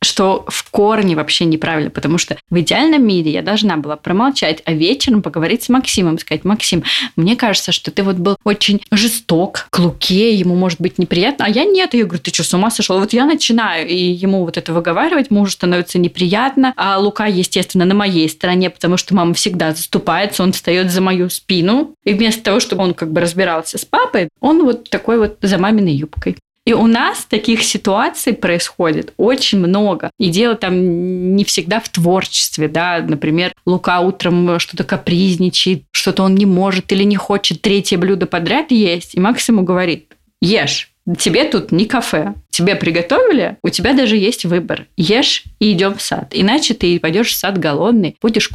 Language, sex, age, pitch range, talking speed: Russian, female, 20-39, 175-220 Hz, 185 wpm